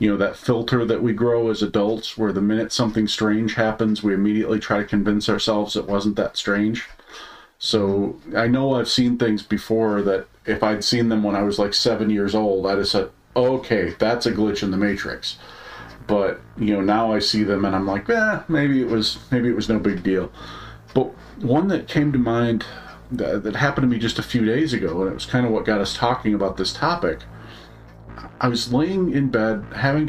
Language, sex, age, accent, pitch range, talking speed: English, male, 40-59, American, 105-125 Hz, 215 wpm